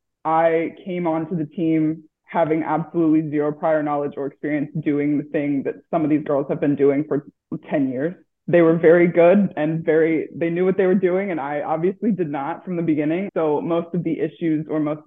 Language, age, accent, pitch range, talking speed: English, 20-39, American, 150-170 Hz, 210 wpm